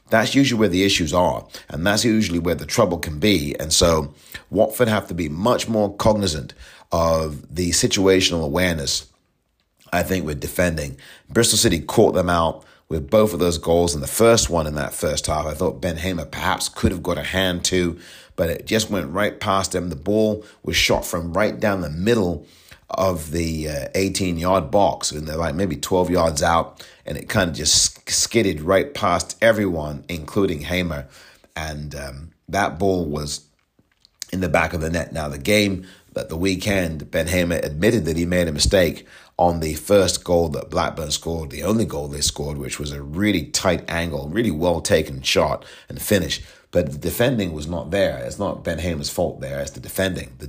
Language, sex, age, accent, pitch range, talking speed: English, male, 30-49, British, 75-95 Hz, 195 wpm